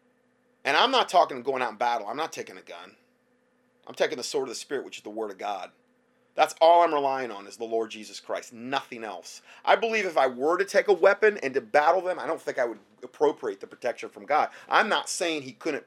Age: 30-49